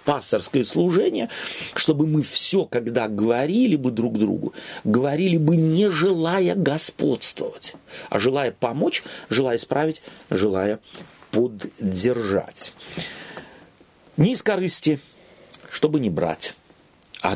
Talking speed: 100 wpm